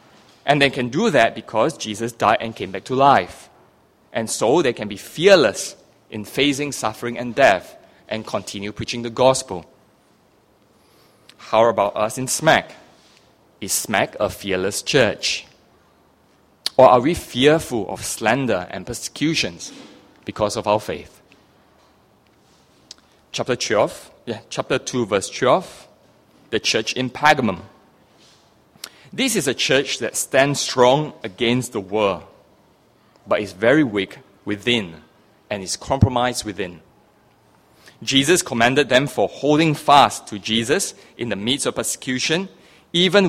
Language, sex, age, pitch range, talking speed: English, male, 20-39, 115-150 Hz, 130 wpm